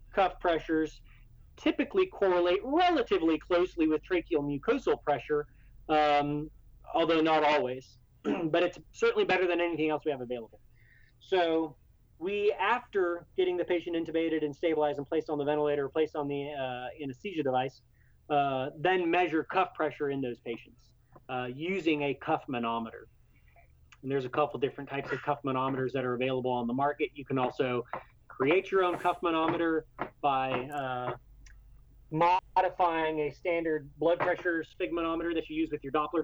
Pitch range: 130-175 Hz